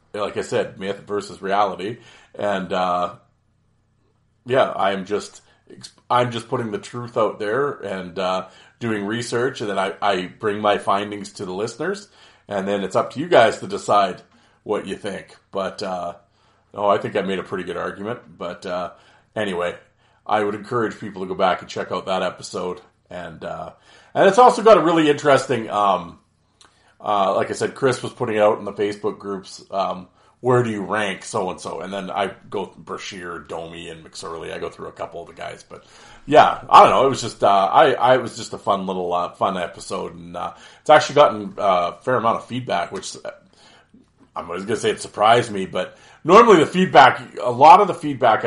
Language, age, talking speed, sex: English, 40-59, 205 wpm, male